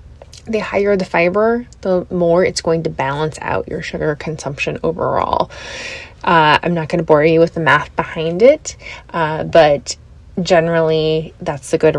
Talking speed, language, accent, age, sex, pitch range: 165 wpm, English, American, 20-39, female, 150-170 Hz